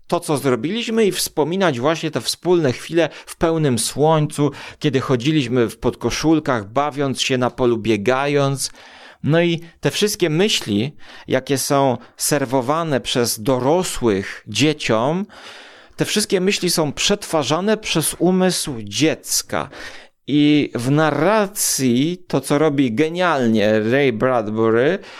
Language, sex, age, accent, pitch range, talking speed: Polish, male, 40-59, native, 125-165 Hz, 115 wpm